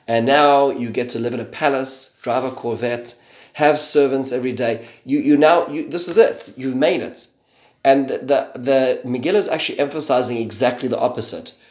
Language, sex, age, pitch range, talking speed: English, male, 30-49, 115-135 Hz, 185 wpm